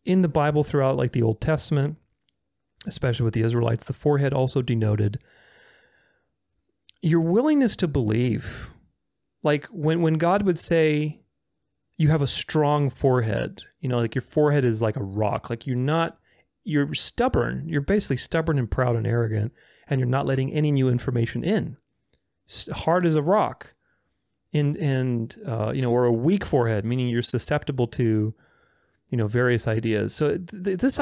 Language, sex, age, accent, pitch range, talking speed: English, male, 30-49, American, 115-165 Hz, 160 wpm